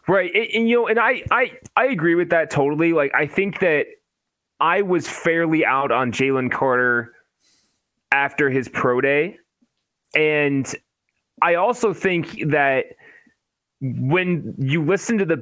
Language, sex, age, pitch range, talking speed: English, male, 20-39, 130-185 Hz, 150 wpm